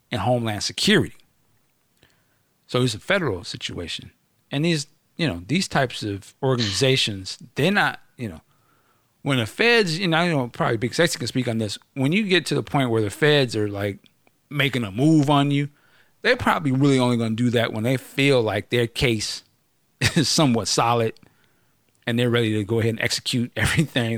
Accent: American